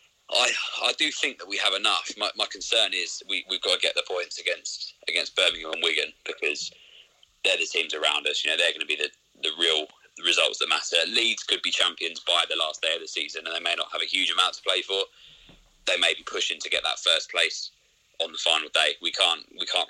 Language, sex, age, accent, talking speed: English, male, 20-39, British, 245 wpm